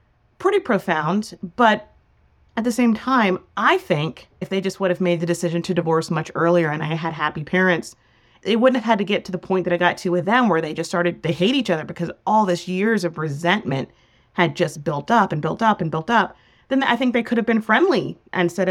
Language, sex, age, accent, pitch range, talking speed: English, female, 30-49, American, 155-195 Hz, 235 wpm